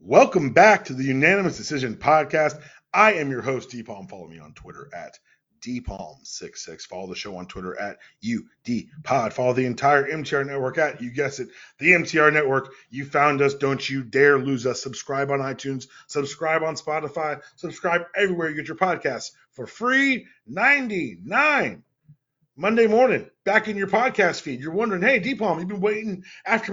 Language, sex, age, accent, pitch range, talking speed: English, male, 30-49, American, 145-200 Hz, 175 wpm